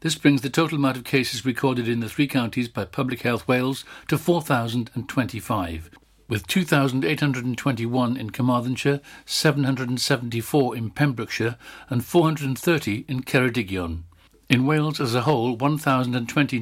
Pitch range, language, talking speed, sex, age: 115-140 Hz, English, 125 wpm, male, 60-79